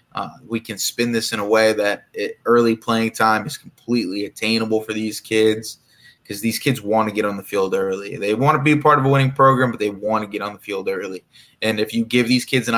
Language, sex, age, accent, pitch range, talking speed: English, male, 20-39, American, 105-125 Hz, 255 wpm